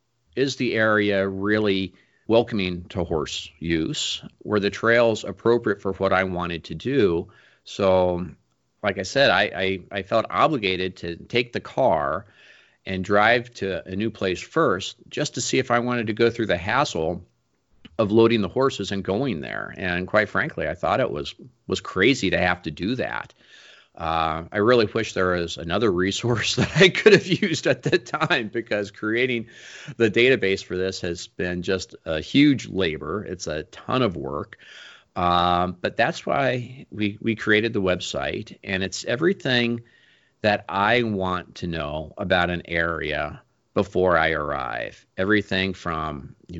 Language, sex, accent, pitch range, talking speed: English, male, American, 90-115 Hz, 165 wpm